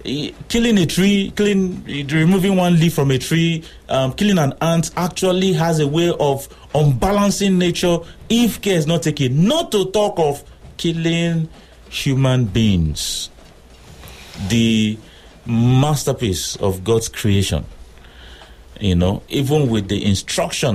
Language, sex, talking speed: English, male, 130 wpm